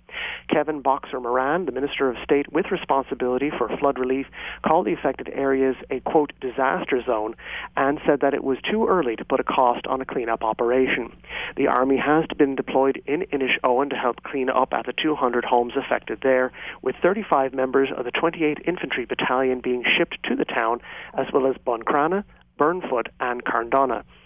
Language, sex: English, male